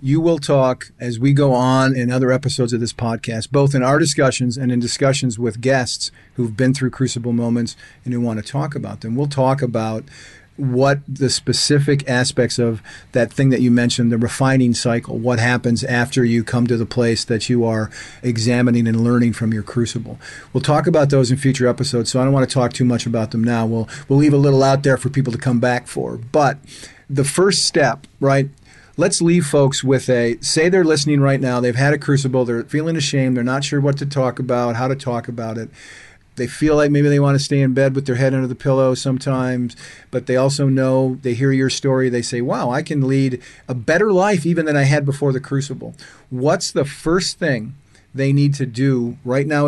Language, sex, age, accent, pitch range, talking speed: English, male, 40-59, American, 120-140 Hz, 220 wpm